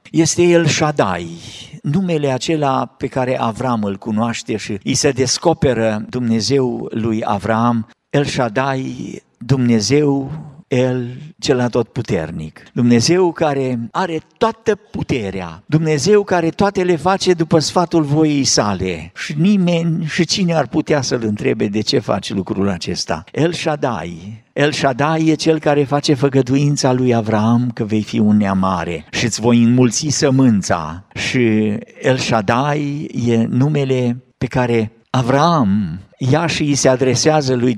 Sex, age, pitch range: male, 50-69, 115-170 Hz